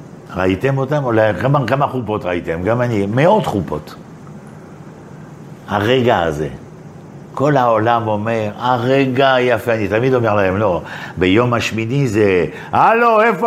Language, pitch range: Hebrew, 95-135 Hz